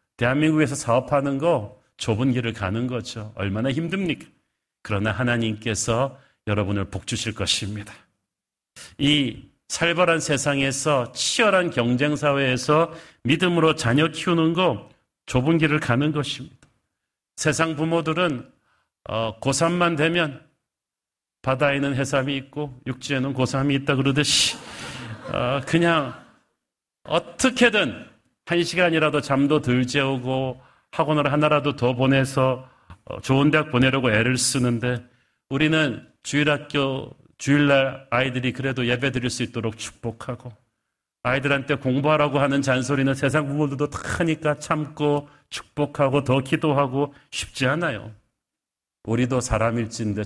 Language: Korean